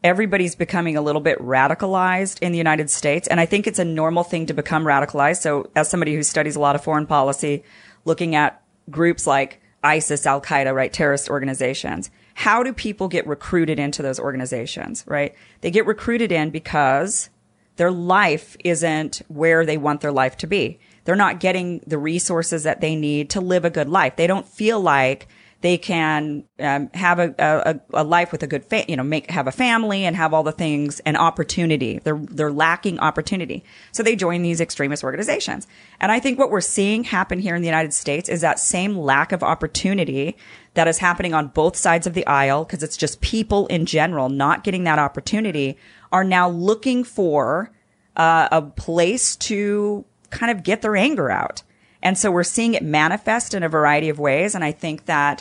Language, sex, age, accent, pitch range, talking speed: English, female, 30-49, American, 145-185 Hz, 195 wpm